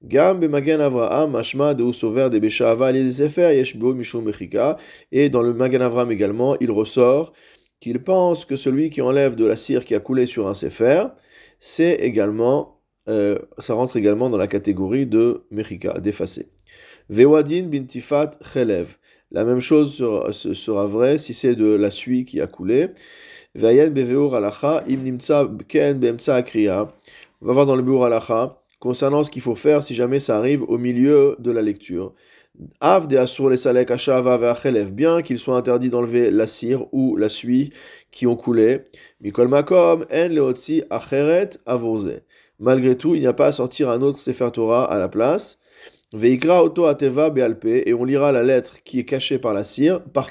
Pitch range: 120-145 Hz